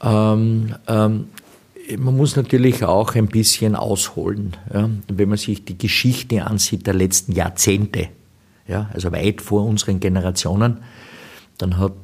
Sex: male